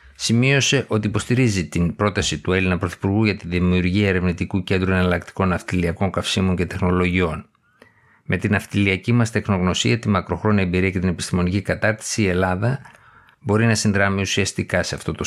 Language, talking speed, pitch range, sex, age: Greek, 155 wpm, 90-105 Hz, male, 50-69